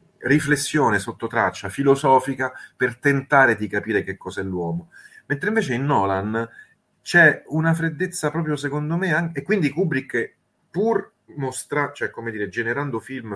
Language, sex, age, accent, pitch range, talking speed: Italian, male, 30-49, native, 95-150 Hz, 140 wpm